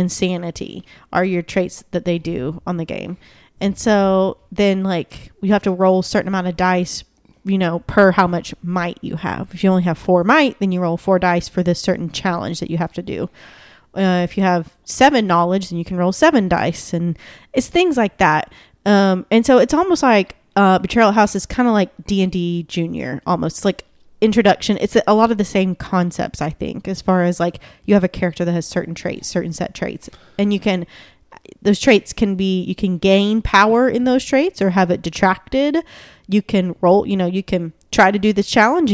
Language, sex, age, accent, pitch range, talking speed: English, female, 20-39, American, 180-215 Hz, 215 wpm